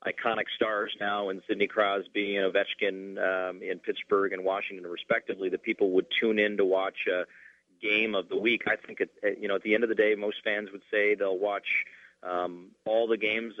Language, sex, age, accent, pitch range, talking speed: English, male, 40-59, American, 95-110 Hz, 220 wpm